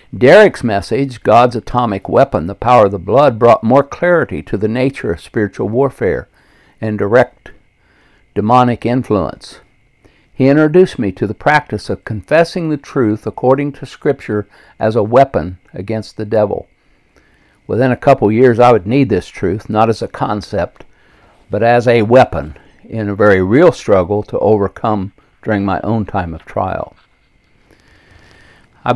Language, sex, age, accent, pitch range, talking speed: English, male, 60-79, American, 100-125 Hz, 150 wpm